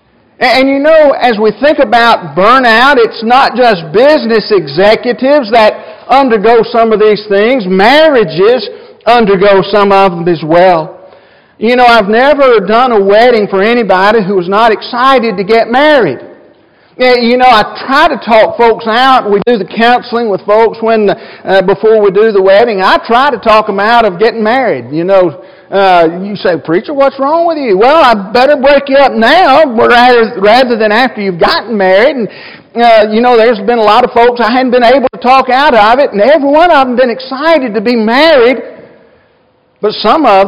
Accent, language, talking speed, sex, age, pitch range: American, English, 190 wpm, male, 50-69, 200-255 Hz